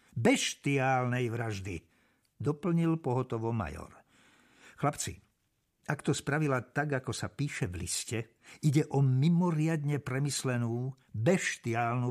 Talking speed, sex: 100 wpm, male